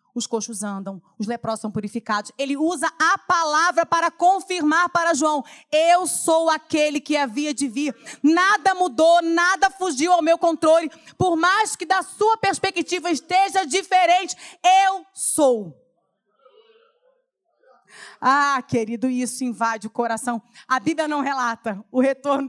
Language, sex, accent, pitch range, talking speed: Portuguese, female, Brazilian, 235-330 Hz, 135 wpm